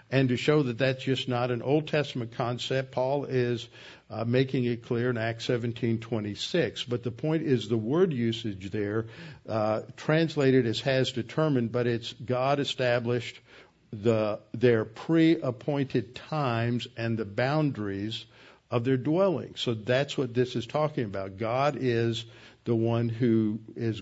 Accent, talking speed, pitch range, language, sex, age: American, 155 wpm, 115-140 Hz, English, male, 50-69